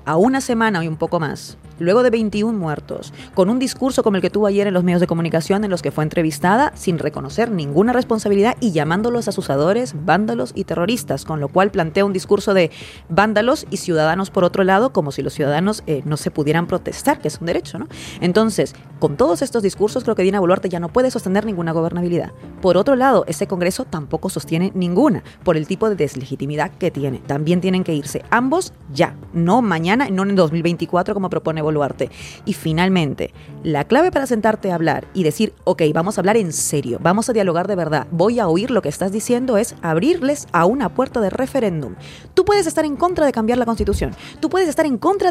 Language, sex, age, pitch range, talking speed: Spanish, female, 30-49, 165-235 Hz, 210 wpm